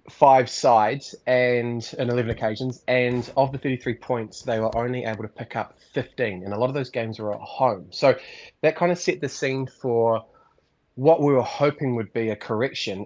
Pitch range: 110-130 Hz